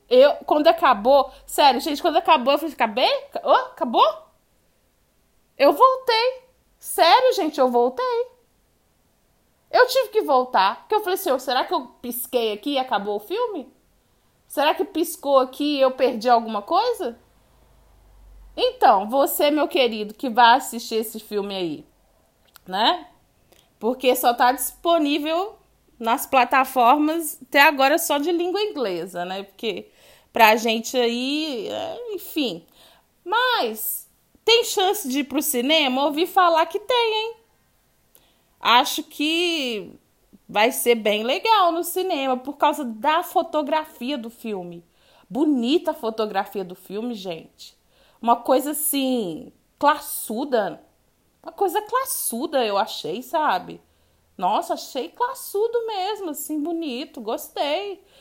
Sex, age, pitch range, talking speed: female, 20-39, 245-350 Hz, 125 wpm